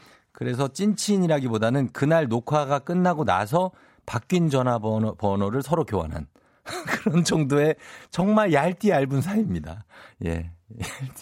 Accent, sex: native, male